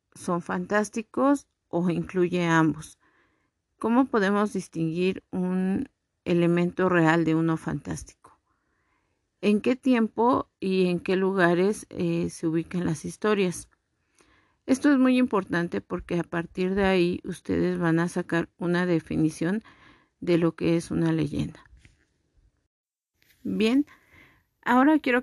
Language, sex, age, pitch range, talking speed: Spanish, female, 50-69, 170-210 Hz, 120 wpm